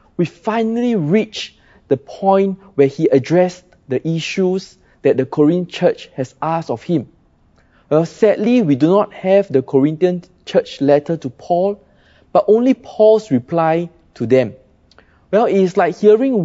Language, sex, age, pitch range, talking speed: English, male, 20-39, 140-195 Hz, 145 wpm